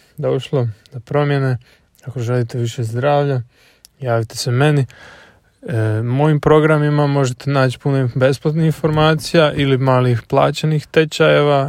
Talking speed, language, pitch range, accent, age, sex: 120 wpm, Croatian, 125-150 Hz, Serbian, 20-39, male